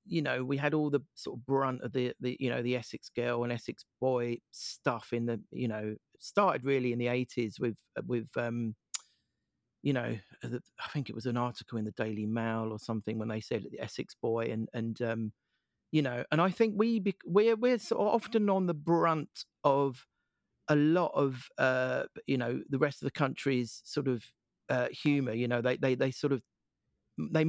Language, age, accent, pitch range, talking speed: English, 40-59, British, 125-165 Hz, 205 wpm